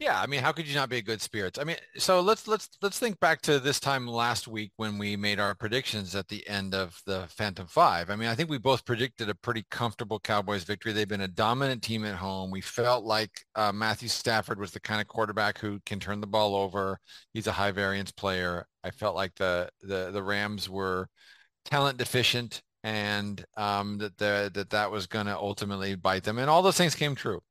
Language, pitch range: English, 100-130 Hz